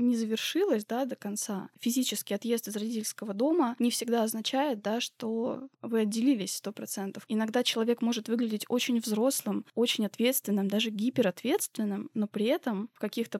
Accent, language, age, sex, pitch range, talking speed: native, Russian, 20-39, female, 215-255 Hz, 150 wpm